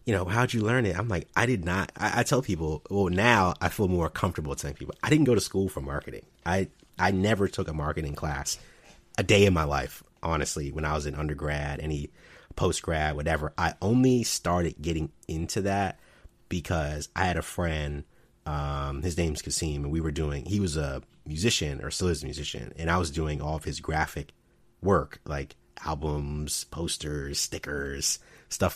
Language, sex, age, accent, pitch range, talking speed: English, male, 30-49, American, 75-95 Hz, 195 wpm